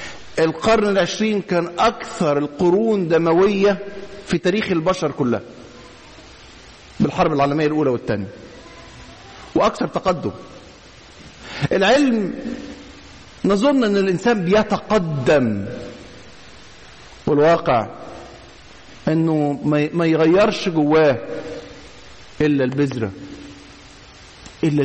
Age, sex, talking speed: 50-69, male, 70 wpm